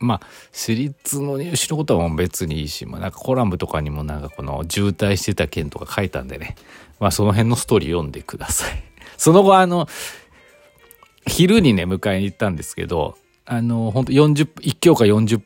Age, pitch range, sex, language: 40-59, 90-120 Hz, male, Japanese